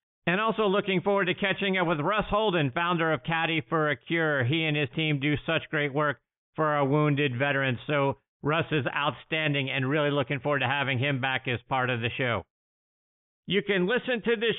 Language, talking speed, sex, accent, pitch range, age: English, 205 wpm, male, American, 130-175 Hz, 50-69